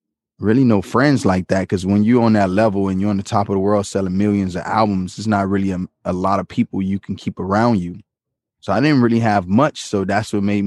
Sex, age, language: male, 20-39, English